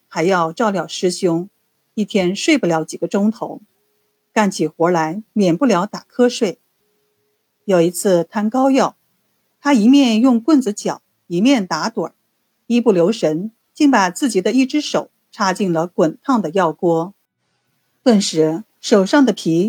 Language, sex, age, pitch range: Chinese, female, 50-69, 170-245 Hz